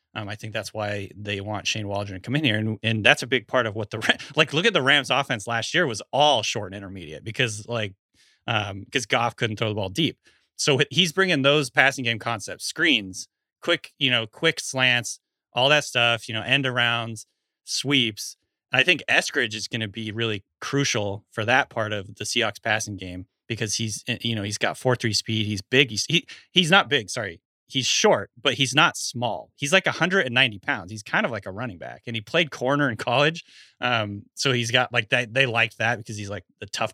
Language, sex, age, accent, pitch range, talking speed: English, male, 30-49, American, 105-130 Hz, 225 wpm